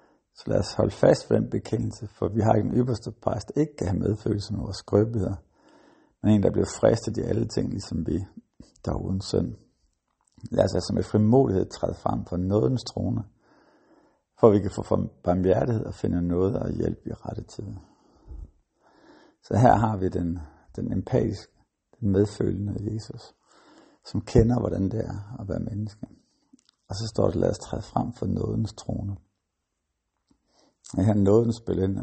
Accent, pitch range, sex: native, 95-115 Hz, male